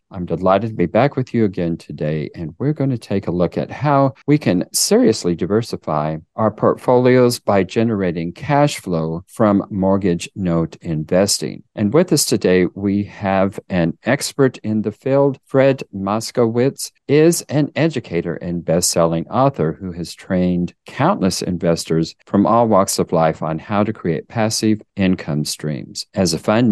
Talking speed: 160 wpm